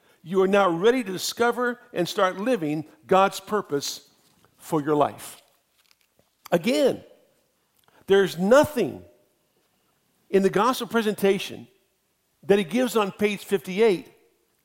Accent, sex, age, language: American, male, 60-79, English